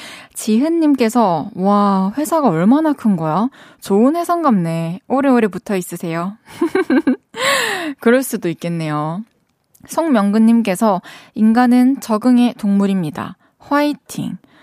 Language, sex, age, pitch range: Korean, female, 20-39, 195-280 Hz